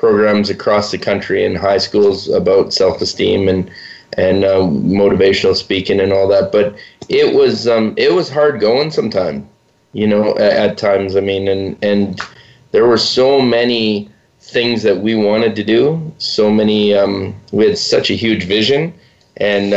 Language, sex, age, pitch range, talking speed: English, male, 20-39, 100-125 Hz, 165 wpm